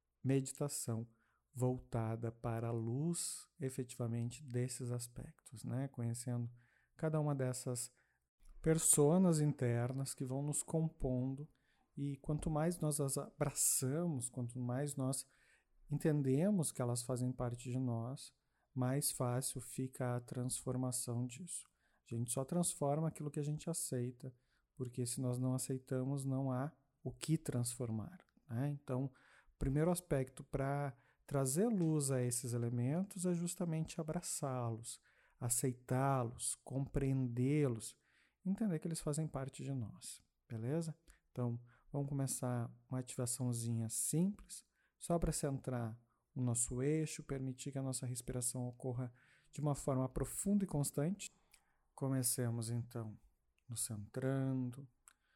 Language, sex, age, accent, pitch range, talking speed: Portuguese, male, 40-59, Brazilian, 125-150 Hz, 120 wpm